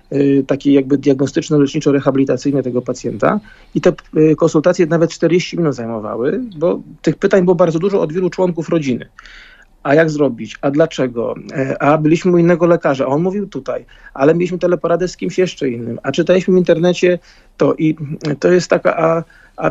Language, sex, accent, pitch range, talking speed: Polish, male, native, 150-180 Hz, 170 wpm